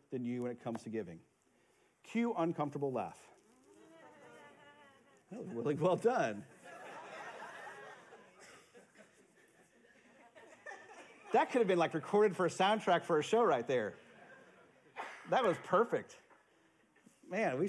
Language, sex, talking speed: English, male, 115 wpm